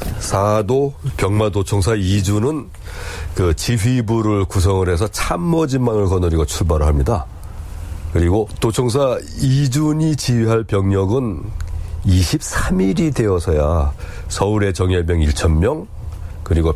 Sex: male